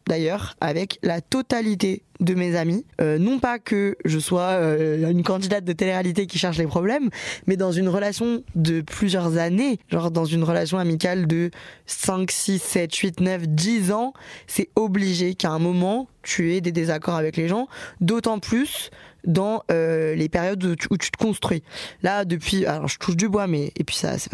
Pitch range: 165-200 Hz